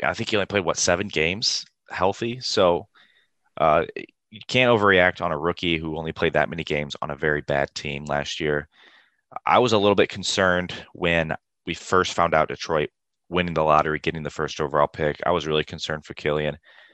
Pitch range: 75-95 Hz